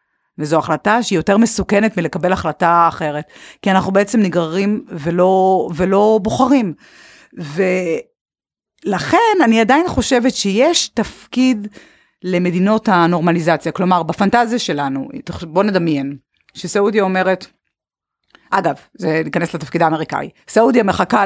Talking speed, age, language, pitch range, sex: 105 wpm, 30-49, Hebrew, 165-225 Hz, female